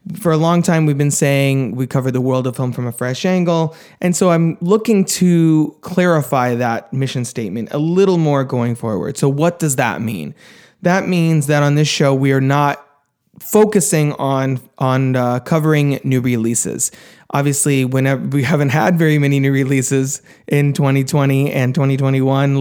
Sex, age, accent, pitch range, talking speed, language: male, 20-39, American, 130-165 Hz, 175 wpm, English